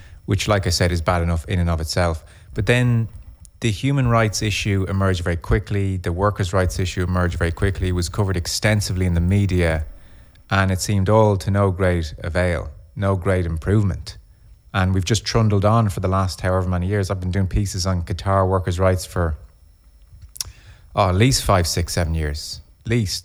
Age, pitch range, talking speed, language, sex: 30-49, 85-100 Hz, 185 wpm, English, male